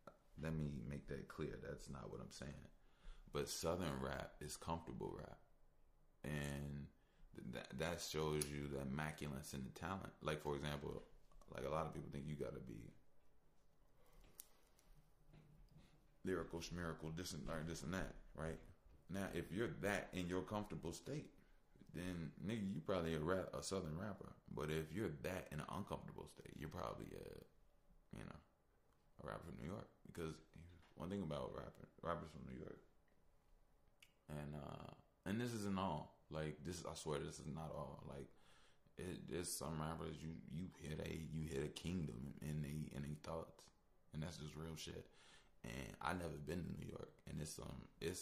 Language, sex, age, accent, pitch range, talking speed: English, male, 20-39, American, 75-85 Hz, 175 wpm